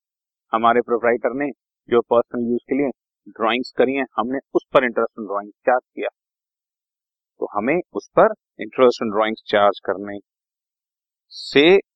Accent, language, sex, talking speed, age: native, Hindi, male, 145 wpm, 40-59